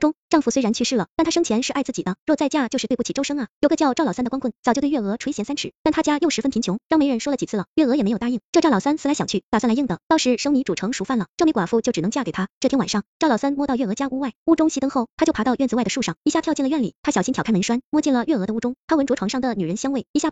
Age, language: 20-39, Chinese